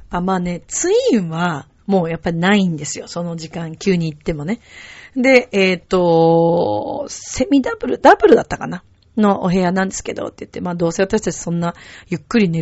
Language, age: Japanese, 40-59